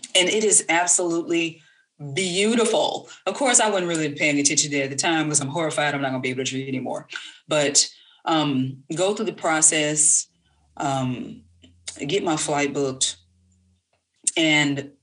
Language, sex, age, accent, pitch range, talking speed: English, female, 30-49, American, 140-185 Hz, 160 wpm